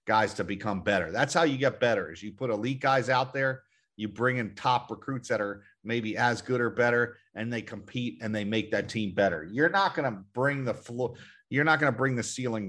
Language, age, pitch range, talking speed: English, 40-59, 105-130 Hz, 230 wpm